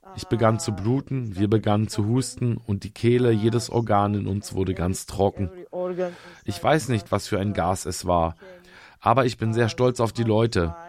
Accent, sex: German, male